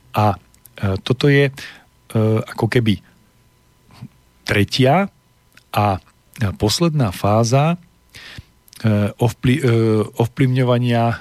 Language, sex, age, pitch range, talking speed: Slovak, male, 40-59, 105-130 Hz, 60 wpm